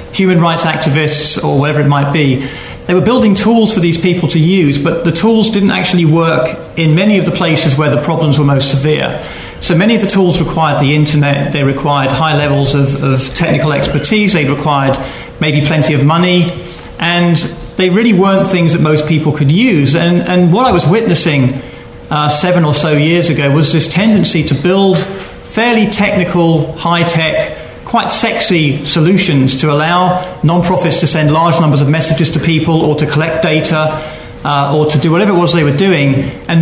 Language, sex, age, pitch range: English, male, 40-59, 150-175 Hz